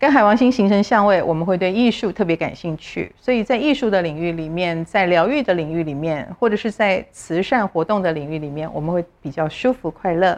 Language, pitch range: Chinese, 160-225 Hz